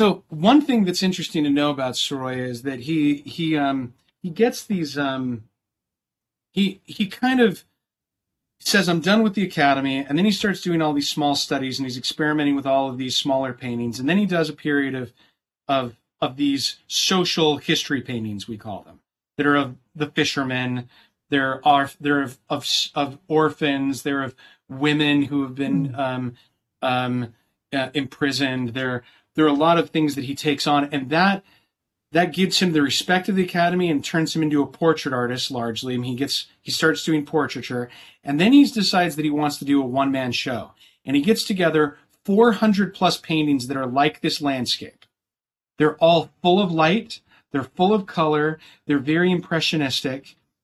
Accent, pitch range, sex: American, 135-170 Hz, male